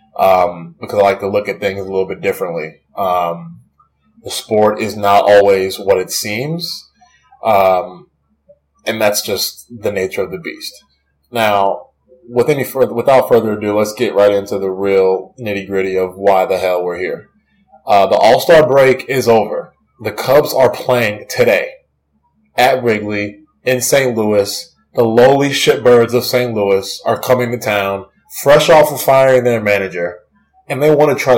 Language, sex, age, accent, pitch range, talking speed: English, male, 20-39, American, 100-125 Hz, 170 wpm